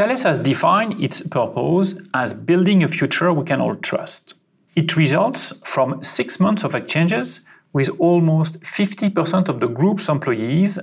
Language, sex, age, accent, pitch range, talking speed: English, male, 40-59, French, 145-190 Hz, 150 wpm